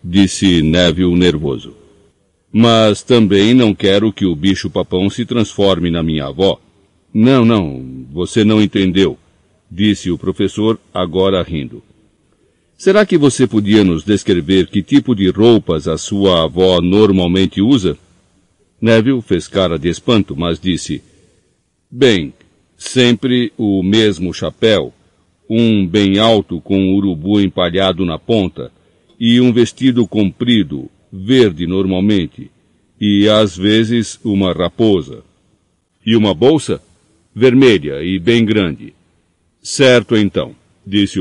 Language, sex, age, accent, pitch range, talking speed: Portuguese, male, 60-79, Brazilian, 90-110 Hz, 120 wpm